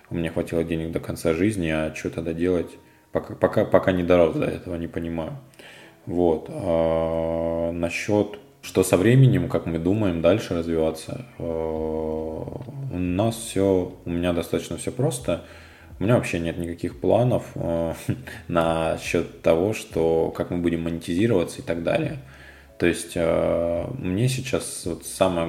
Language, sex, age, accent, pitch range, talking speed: Russian, male, 20-39, native, 80-95 Hz, 135 wpm